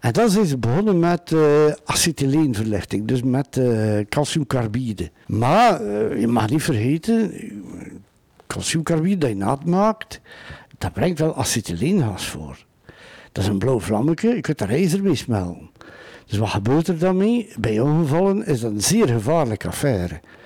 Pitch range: 115-175 Hz